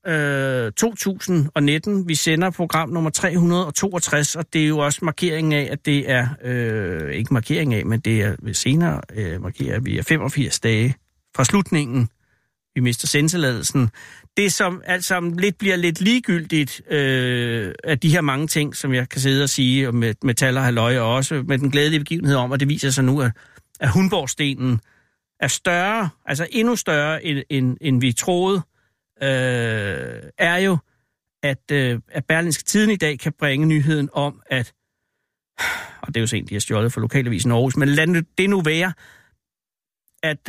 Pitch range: 125-160 Hz